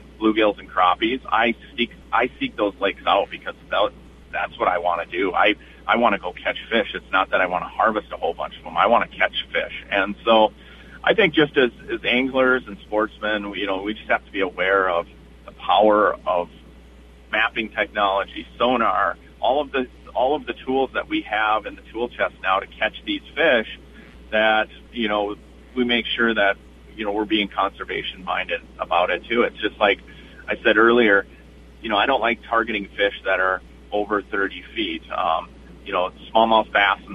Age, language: 40-59, English